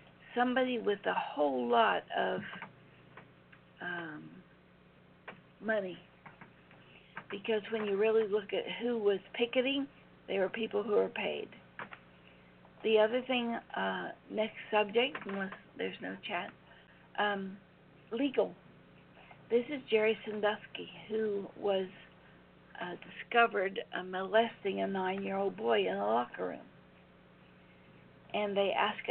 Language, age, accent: English, 60-79, American